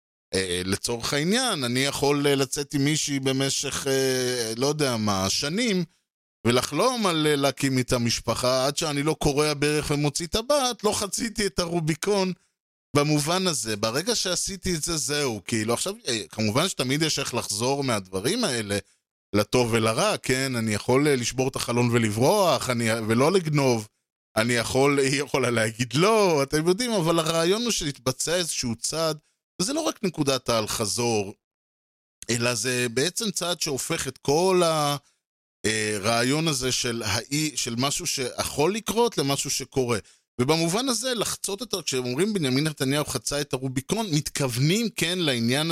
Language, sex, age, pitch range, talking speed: Hebrew, male, 20-39, 120-160 Hz, 145 wpm